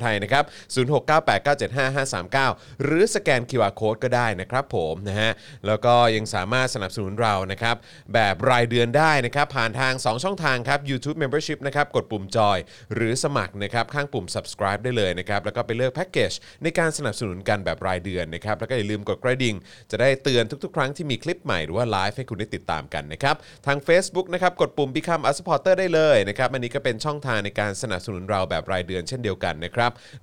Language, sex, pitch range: Thai, male, 100-135 Hz